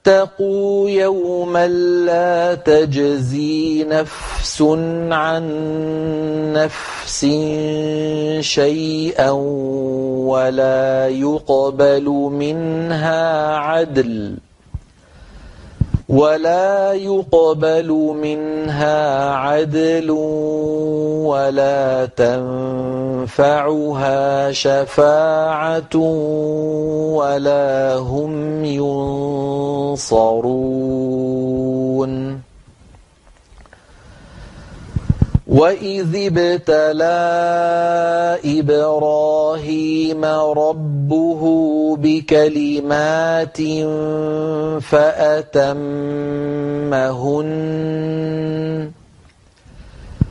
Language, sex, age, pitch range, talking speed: Arabic, male, 40-59, 140-160 Hz, 35 wpm